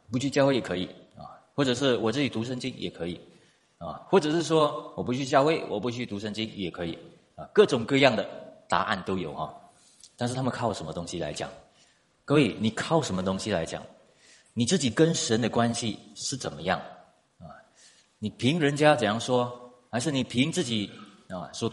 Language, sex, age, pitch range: Chinese, male, 30-49, 105-140 Hz